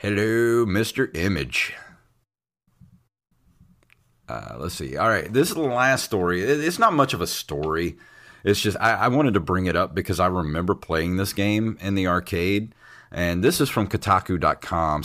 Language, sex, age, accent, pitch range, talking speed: English, male, 30-49, American, 85-110 Hz, 170 wpm